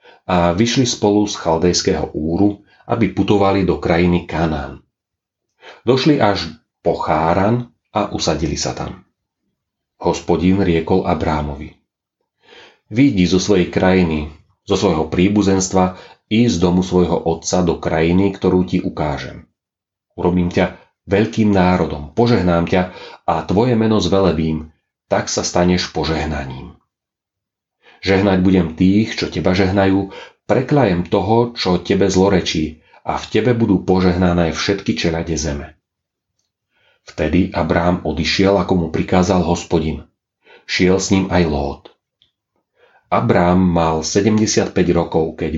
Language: Slovak